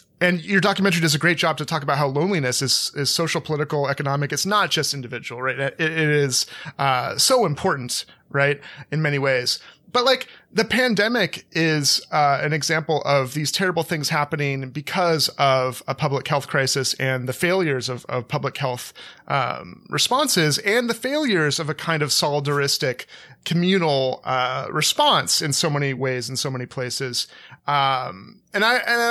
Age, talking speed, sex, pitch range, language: 30-49, 175 wpm, male, 135-180 Hz, English